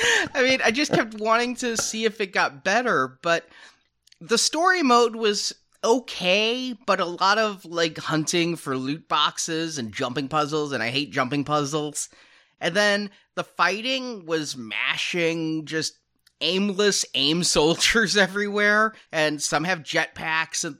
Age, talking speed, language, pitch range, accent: 30-49, 145 wpm, English, 145-195 Hz, American